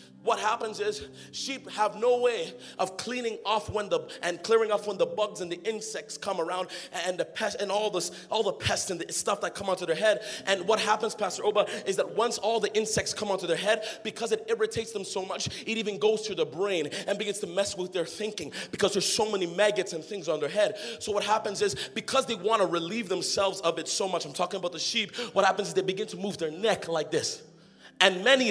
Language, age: English, 30-49